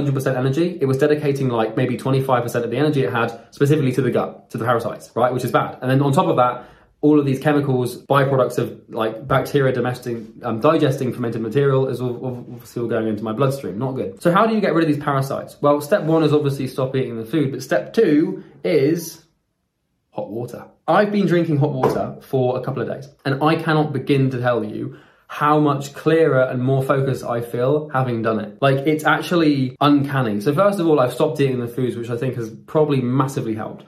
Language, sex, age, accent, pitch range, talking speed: English, male, 20-39, British, 125-155 Hz, 220 wpm